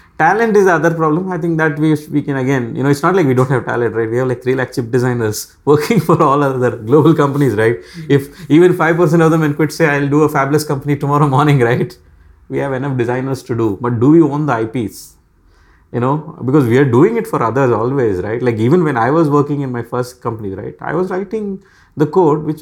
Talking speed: 240 wpm